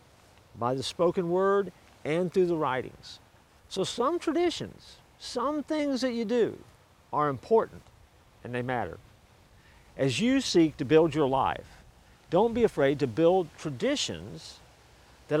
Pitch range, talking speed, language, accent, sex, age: 125-185 Hz, 135 wpm, English, American, male, 50-69